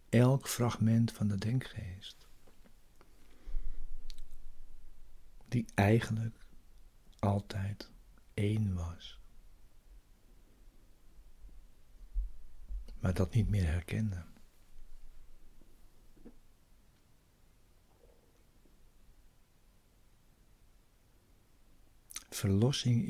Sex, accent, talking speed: male, Dutch, 40 wpm